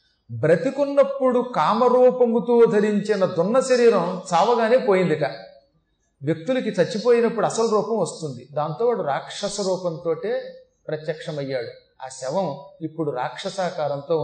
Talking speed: 85 wpm